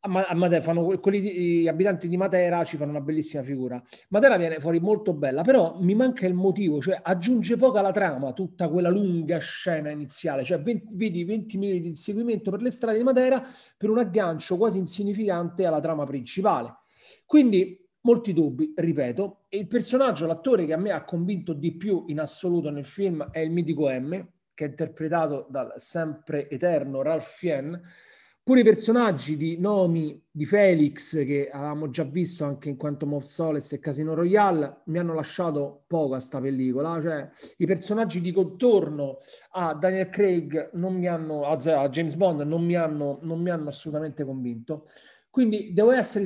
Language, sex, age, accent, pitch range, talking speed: Italian, male, 40-59, native, 150-190 Hz, 175 wpm